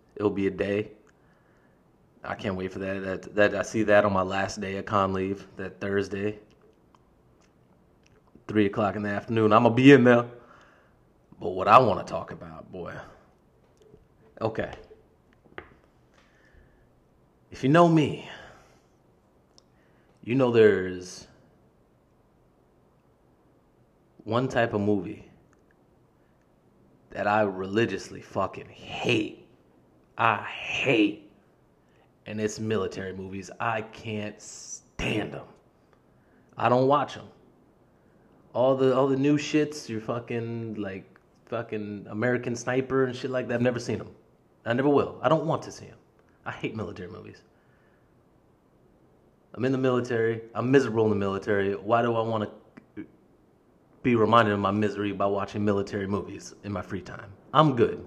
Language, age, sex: English, 30-49, male